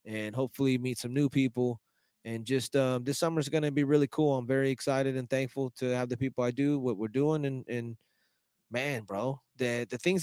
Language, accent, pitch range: English, American, 115-135 Hz